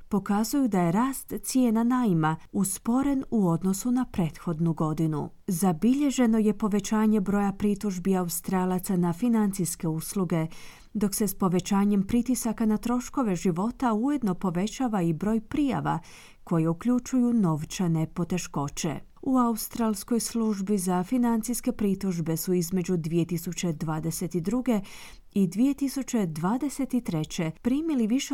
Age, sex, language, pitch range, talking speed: 30-49, female, Croatian, 175-235 Hz, 110 wpm